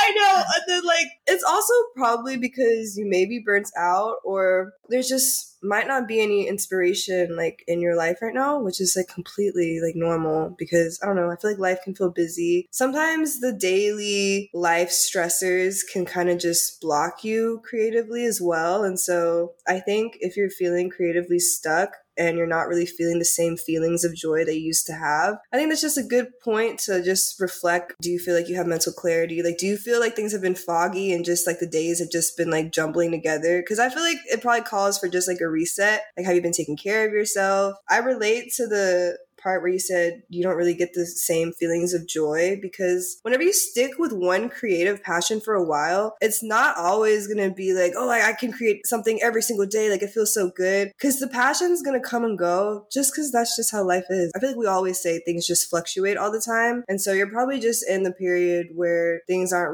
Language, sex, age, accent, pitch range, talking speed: English, female, 20-39, American, 170-220 Hz, 230 wpm